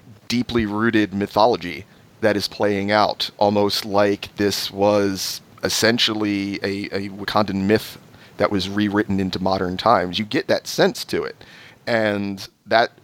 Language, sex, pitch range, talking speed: English, male, 100-125 Hz, 140 wpm